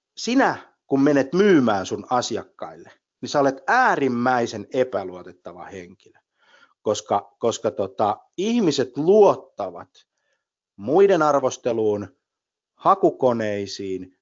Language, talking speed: Finnish, 85 wpm